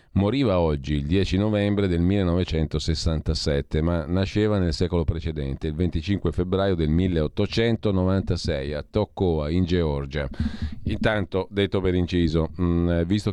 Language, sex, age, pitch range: Italian, male, 40-59, 80-100 Hz